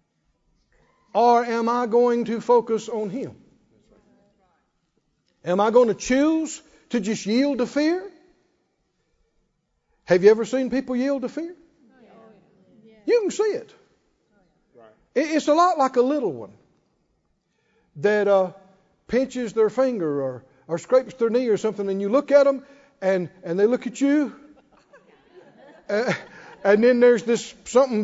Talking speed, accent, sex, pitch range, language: 140 wpm, American, male, 195-280 Hz, English